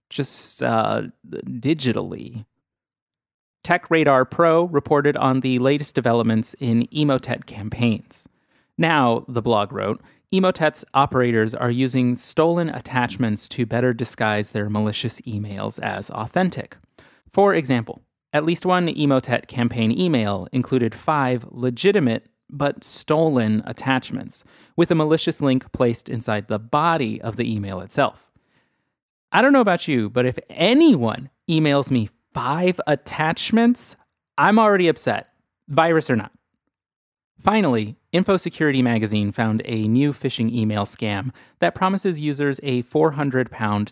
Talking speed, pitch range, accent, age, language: 120 wpm, 115-155 Hz, American, 30-49, English